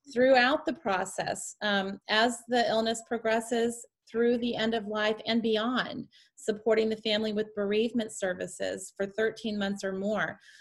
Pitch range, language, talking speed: 200-240 Hz, English, 145 wpm